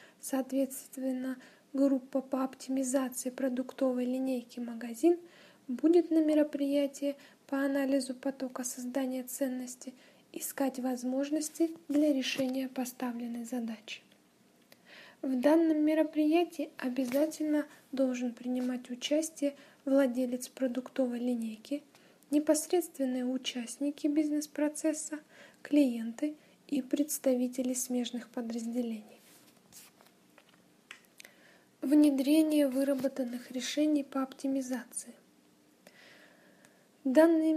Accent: native